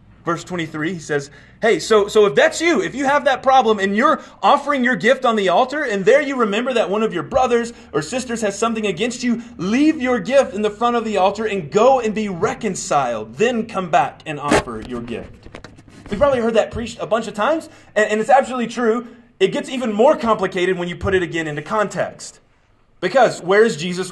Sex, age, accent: male, 30-49, American